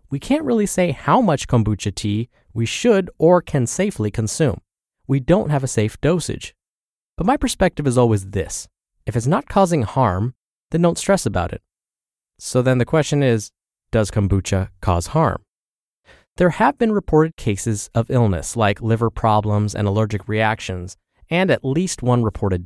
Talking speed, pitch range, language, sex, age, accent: 165 wpm, 110-170 Hz, English, male, 20-39, American